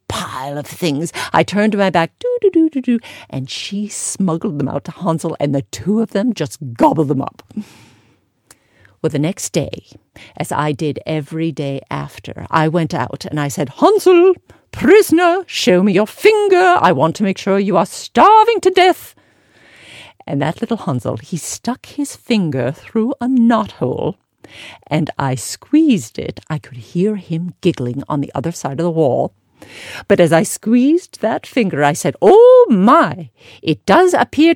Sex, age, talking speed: female, 50-69, 175 wpm